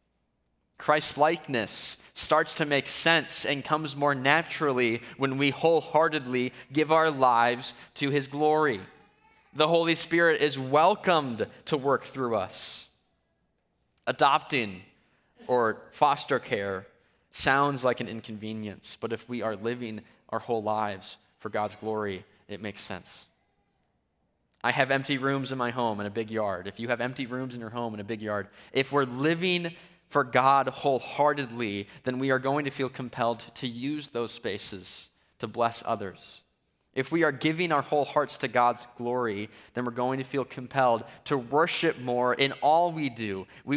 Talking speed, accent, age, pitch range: 160 wpm, American, 20-39, 115-145 Hz